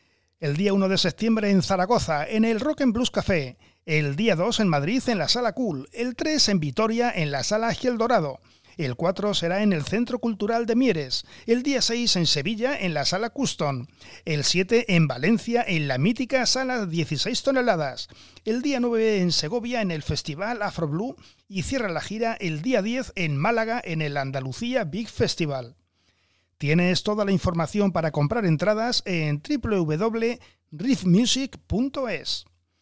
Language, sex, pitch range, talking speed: Spanish, male, 150-230 Hz, 165 wpm